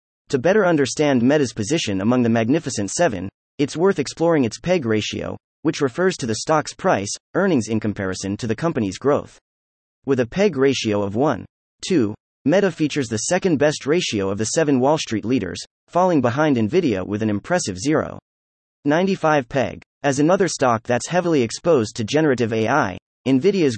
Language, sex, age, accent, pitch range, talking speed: English, male, 30-49, American, 105-155 Hz, 160 wpm